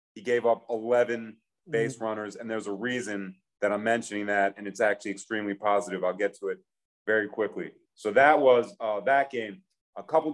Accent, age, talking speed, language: American, 30-49, 190 wpm, English